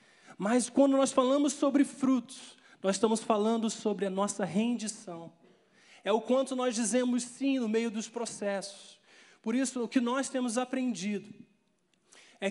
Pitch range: 200-250 Hz